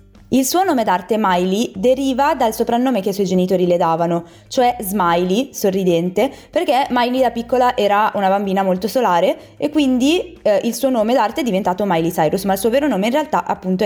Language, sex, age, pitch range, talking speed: Italian, female, 20-39, 185-260 Hz, 195 wpm